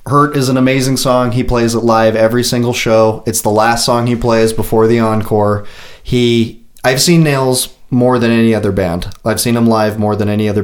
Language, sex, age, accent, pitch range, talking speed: English, male, 30-49, American, 110-130 Hz, 215 wpm